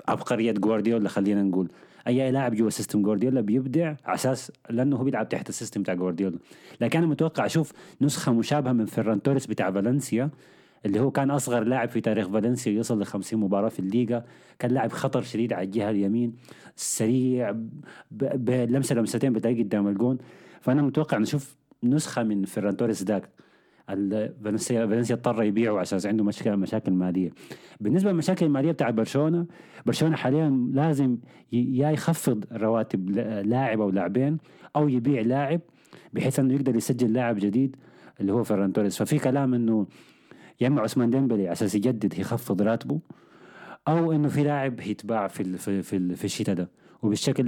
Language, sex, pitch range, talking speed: Arabic, male, 105-135 Hz, 160 wpm